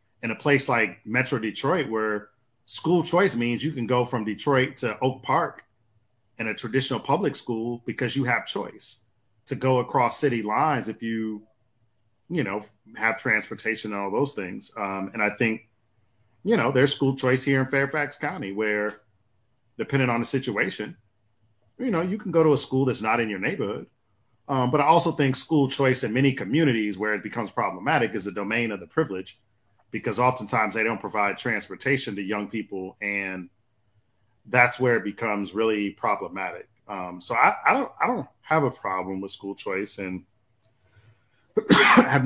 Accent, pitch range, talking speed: American, 105-130 Hz, 175 wpm